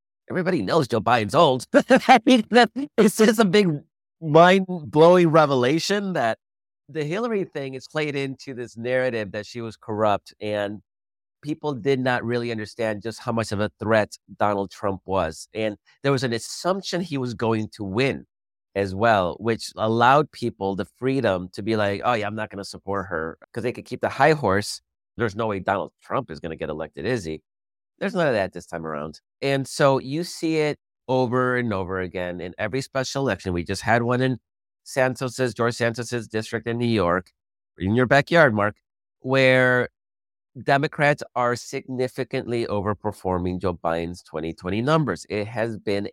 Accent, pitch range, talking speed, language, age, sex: American, 100-130 Hz, 175 wpm, English, 30-49, male